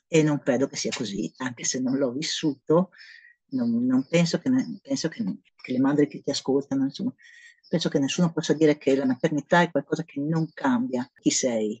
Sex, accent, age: female, native, 40-59